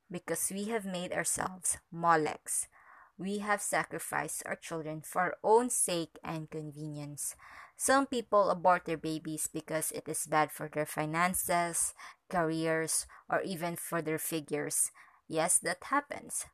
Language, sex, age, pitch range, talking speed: English, female, 20-39, 160-200 Hz, 140 wpm